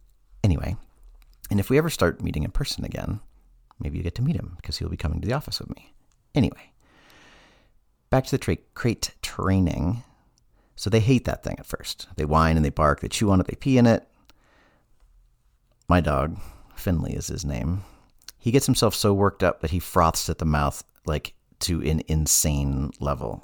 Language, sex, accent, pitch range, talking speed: English, male, American, 70-100 Hz, 190 wpm